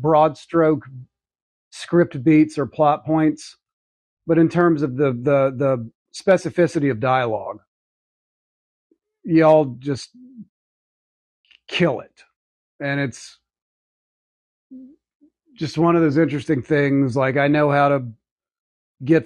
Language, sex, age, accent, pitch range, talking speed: English, male, 40-59, American, 125-155 Hz, 110 wpm